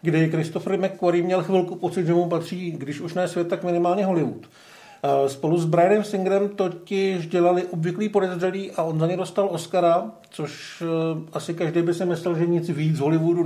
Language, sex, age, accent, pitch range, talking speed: Czech, male, 50-69, native, 160-195 Hz, 185 wpm